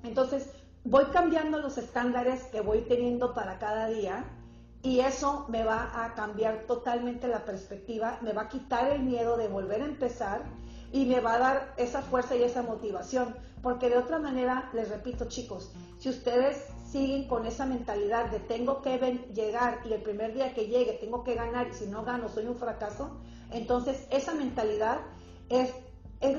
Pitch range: 235-280 Hz